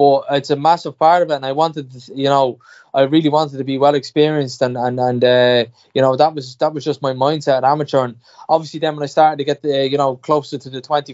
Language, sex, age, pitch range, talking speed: English, male, 10-29, 130-150 Hz, 260 wpm